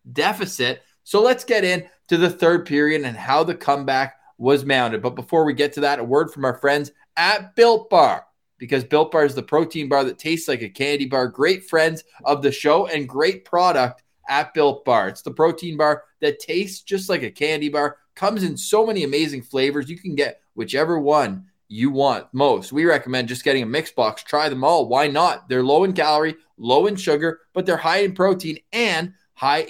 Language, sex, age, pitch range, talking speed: English, male, 20-39, 145-195 Hz, 210 wpm